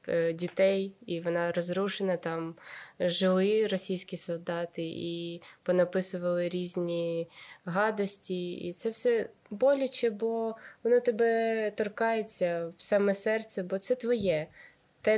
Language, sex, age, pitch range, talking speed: Ukrainian, female, 20-39, 170-195 Hz, 105 wpm